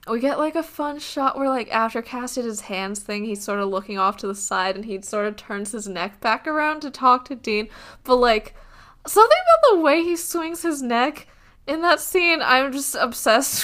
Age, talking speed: 10-29, 225 wpm